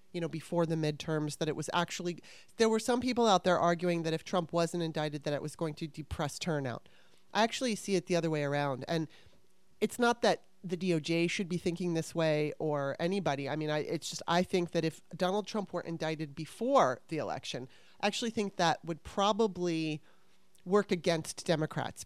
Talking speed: 200 wpm